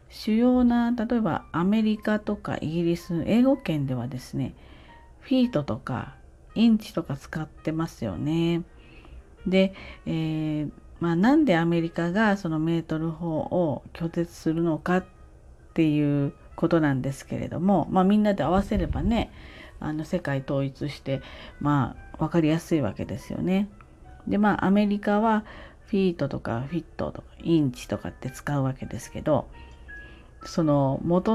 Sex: female